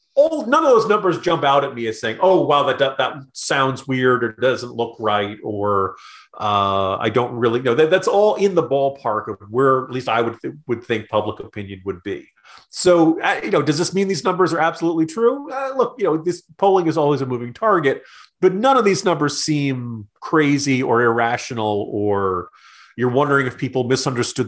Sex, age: male, 40-59